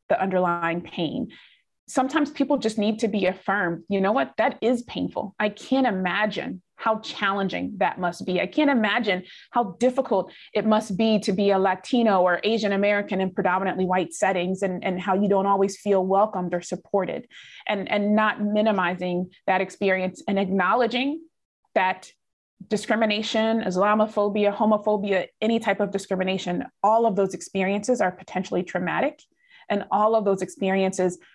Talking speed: 155 wpm